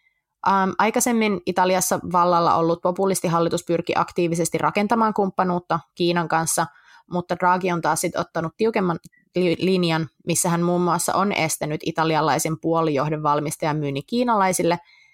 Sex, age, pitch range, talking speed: female, 20-39, 160-185 Hz, 115 wpm